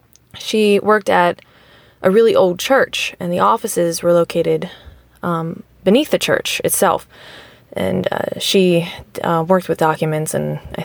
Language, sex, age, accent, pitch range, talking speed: English, female, 20-39, American, 160-200 Hz, 145 wpm